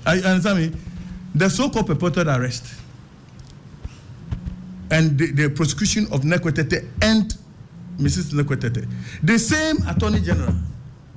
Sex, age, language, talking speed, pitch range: male, 50-69, English, 115 wpm, 150-230 Hz